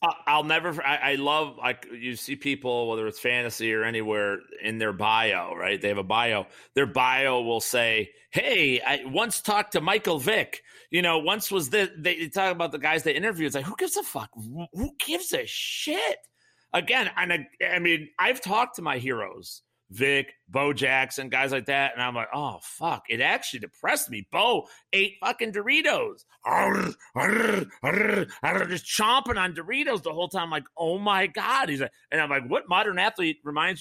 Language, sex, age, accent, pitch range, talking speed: English, male, 40-59, American, 125-185 Hz, 185 wpm